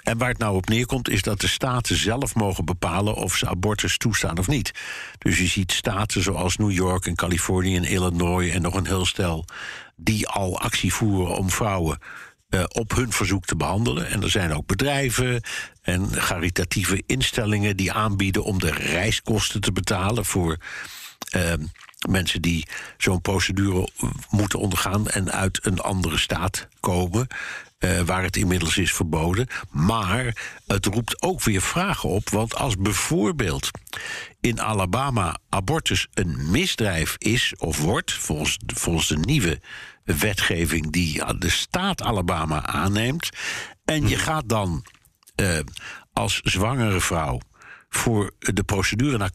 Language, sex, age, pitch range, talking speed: Dutch, male, 60-79, 90-110 Hz, 150 wpm